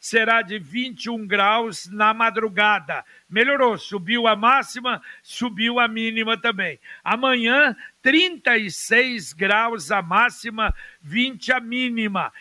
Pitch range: 205-245 Hz